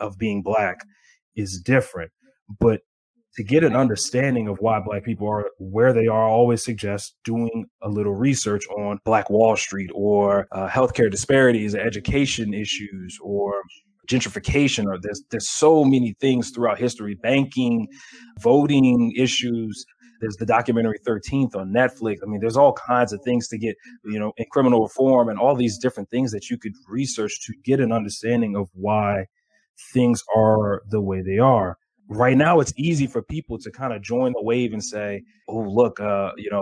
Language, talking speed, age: English, 175 wpm, 30-49